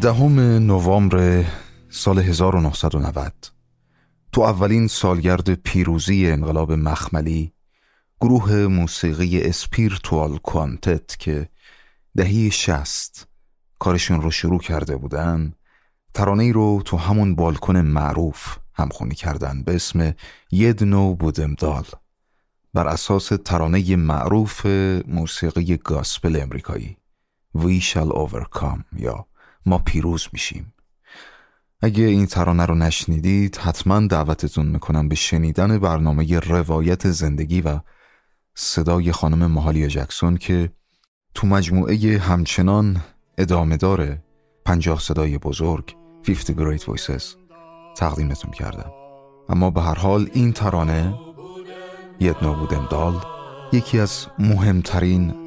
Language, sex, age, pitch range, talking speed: Persian, male, 30-49, 80-100 Hz, 100 wpm